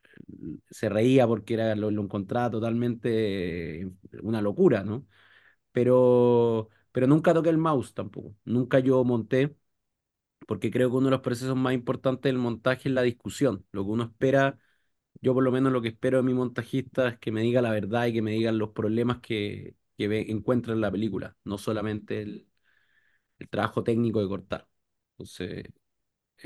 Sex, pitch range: male, 110-135 Hz